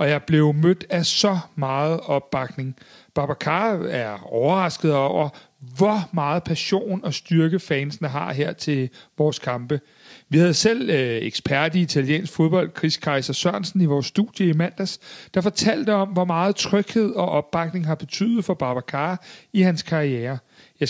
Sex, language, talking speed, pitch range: male, Danish, 160 wpm, 145-185 Hz